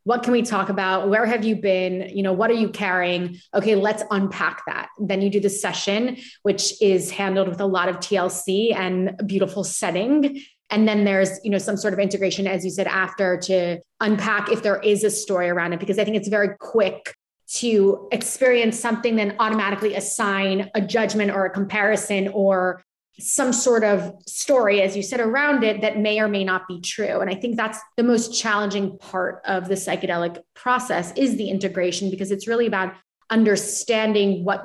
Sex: female